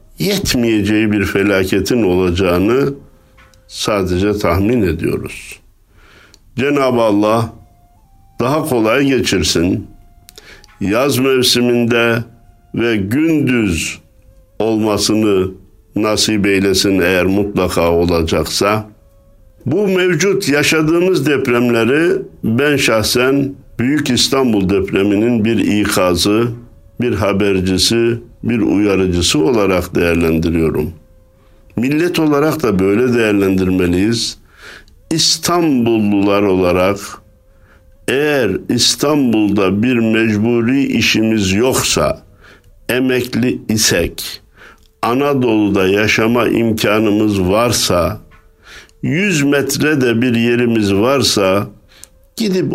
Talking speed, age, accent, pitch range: 75 wpm, 60-79, native, 100-120 Hz